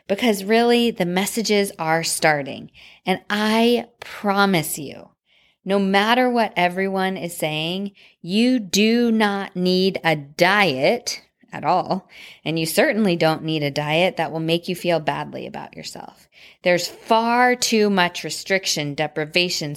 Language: English